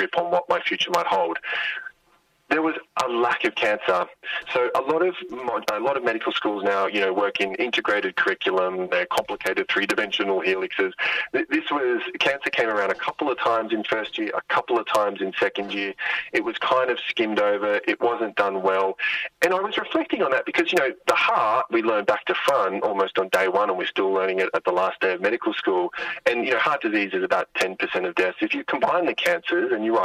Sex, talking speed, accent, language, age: male, 225 wpm, Australian, English, 30-49